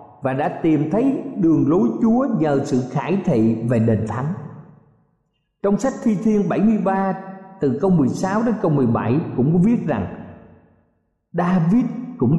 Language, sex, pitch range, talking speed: Vietnamese, male, 130-190 Hz, 150 wpm